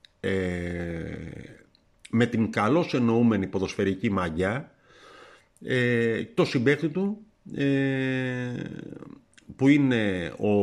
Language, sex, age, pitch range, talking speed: Greek, male, 50-69, 100-135 Hz, 70 wpm